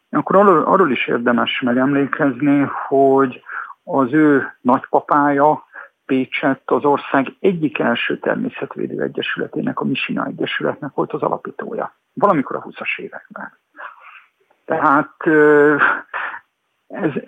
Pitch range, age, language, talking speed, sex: 130-160 Hz, 50-69, Hungarian, 95 wpm, male